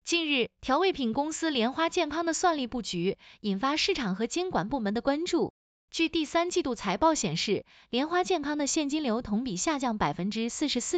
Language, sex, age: Chinese, female, 20-39